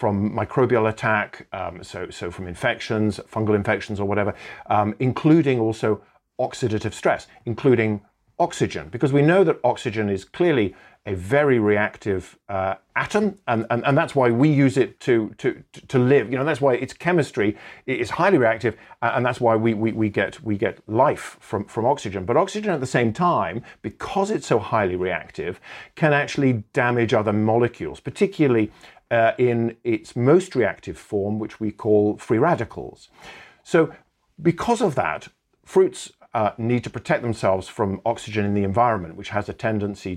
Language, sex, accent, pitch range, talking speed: English, male, British, 105-135 Hz, 165 wpm